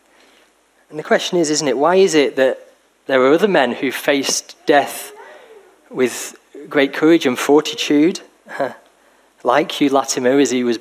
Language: English